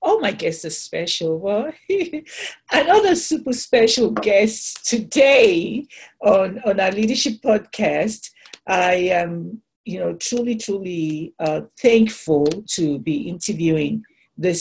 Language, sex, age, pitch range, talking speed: English, female, 50-69, 165-225 Hz, 115 wpm